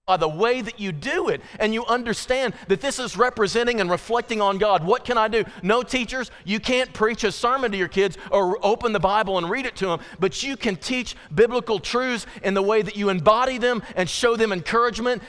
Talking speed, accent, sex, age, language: 230 wpm, American, male, 40-59, English